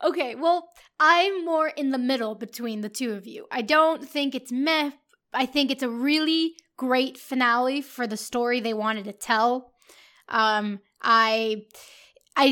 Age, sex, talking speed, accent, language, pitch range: 10-29, female, 165 wpm, American, English, 250-310 Hz